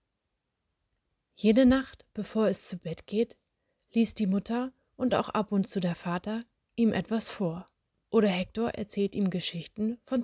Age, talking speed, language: 20-39, 150 wpm, German